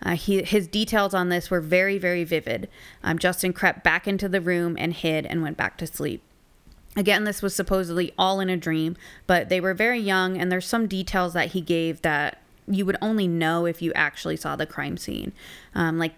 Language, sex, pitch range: English, female, 165-195 Hz